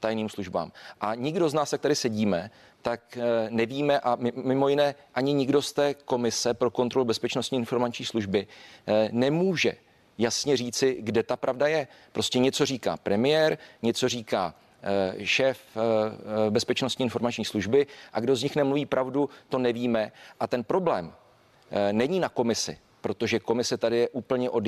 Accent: native